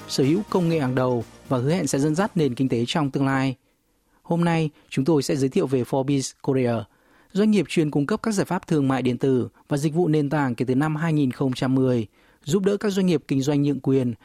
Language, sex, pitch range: Vietnamese, male, 130-170 Hz